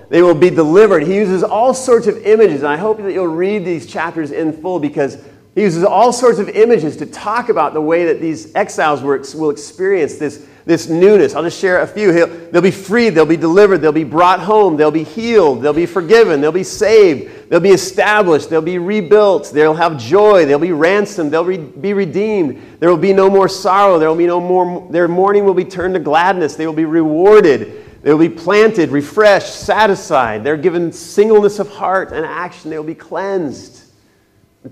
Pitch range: 150-195 Hz